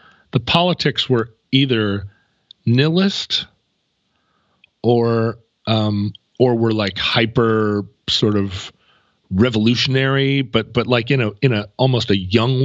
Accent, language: American, English